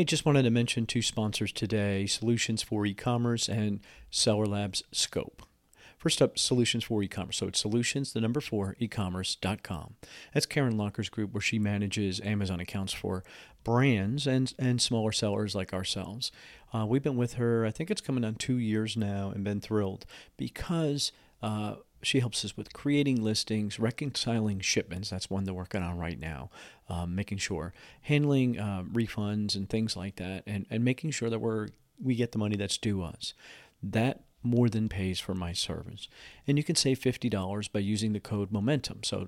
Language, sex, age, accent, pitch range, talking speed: English, male, 40-59, American, 100-120 Hz, 180 wpm